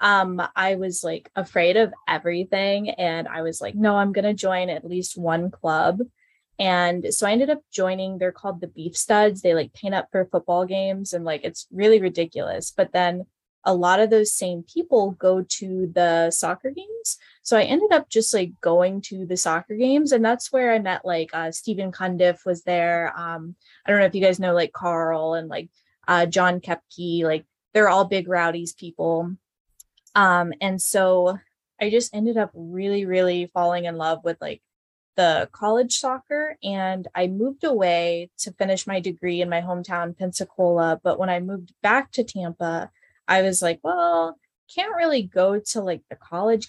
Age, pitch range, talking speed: 10-29, 175-205 Hz, 185 wpm